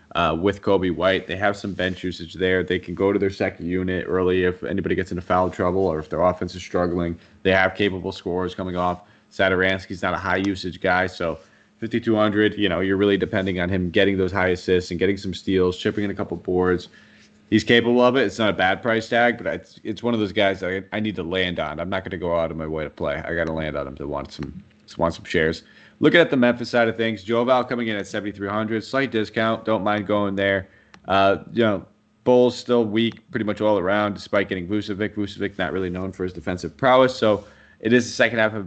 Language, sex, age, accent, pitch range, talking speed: English, male, 30-49, American, 90-105 Hz, 245 wpm